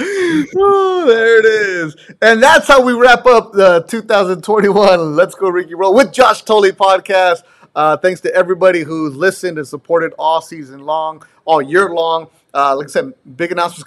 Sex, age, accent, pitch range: male, 30-49, American, 155-200 Hz